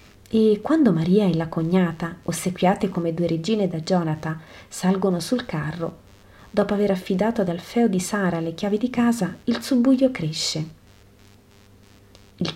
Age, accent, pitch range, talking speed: 30-49, native, 155-200 Hz, 145 wpm